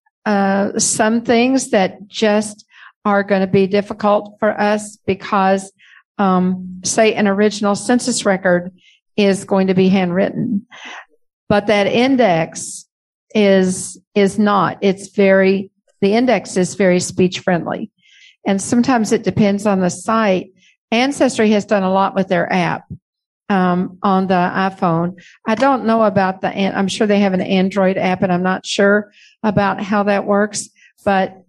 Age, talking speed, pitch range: 50-69, 145 wpm, 185-210 Hz